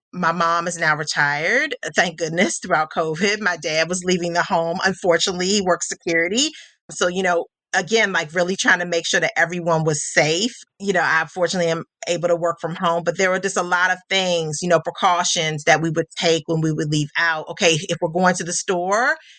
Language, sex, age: English, female, 30-49